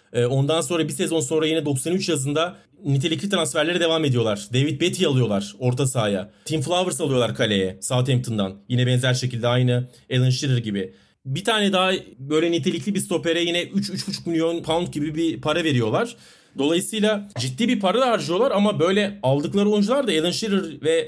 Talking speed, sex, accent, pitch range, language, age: 165 wpm, male, native, 135-185 Hz, Turkish, 40-59